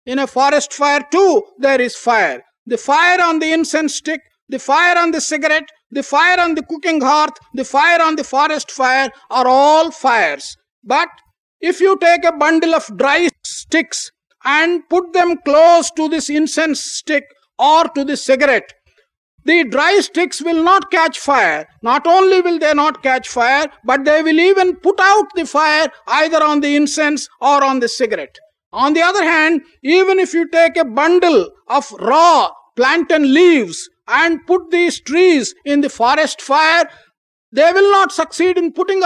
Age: 50-69